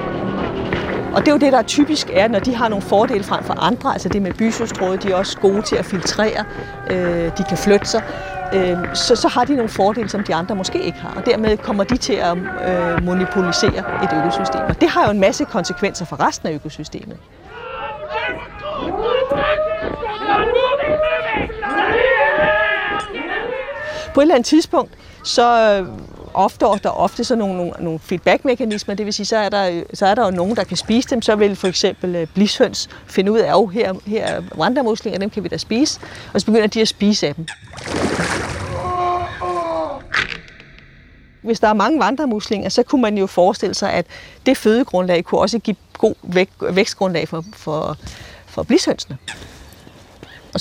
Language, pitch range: Danish, 180-255 Hz